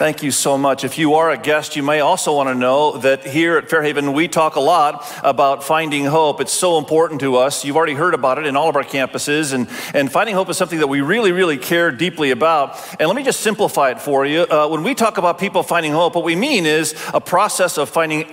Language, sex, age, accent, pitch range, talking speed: English, male, 40-59, American, 135-170 Hz, 255 wpm